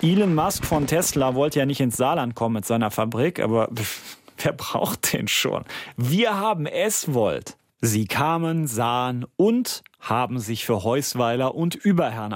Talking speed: 150 wpm